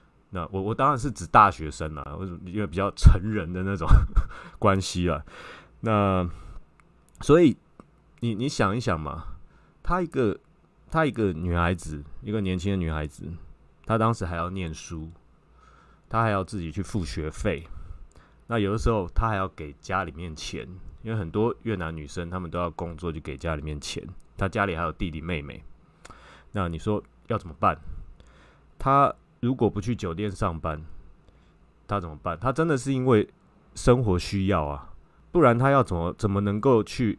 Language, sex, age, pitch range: Chinese, male, 20-39, 80-105 Hz